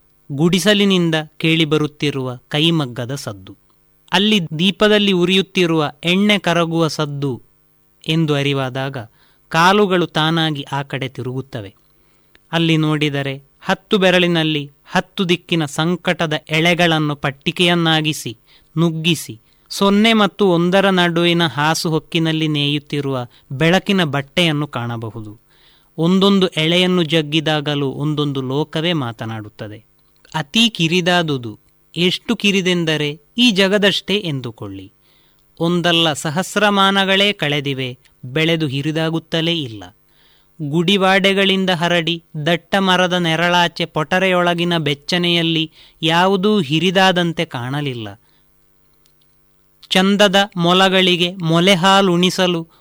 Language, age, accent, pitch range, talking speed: Kannada, 30-49, native, 145-180 Hz, 80 wpm